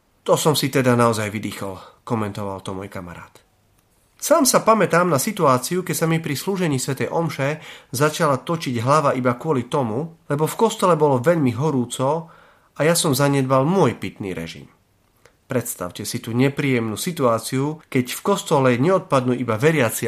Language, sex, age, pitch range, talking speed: Slovak, male, 40-59, 115-165 Hz, 155 wpm